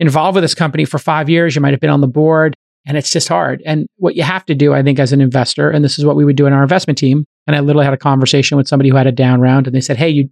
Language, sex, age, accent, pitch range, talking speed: English, male, 40-59, American, 140-170 Hz, 335 wpm